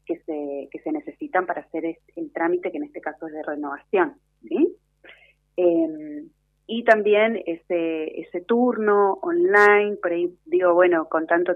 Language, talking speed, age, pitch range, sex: Spanish, 160 wpm, 30-49, 155-185 Hz, female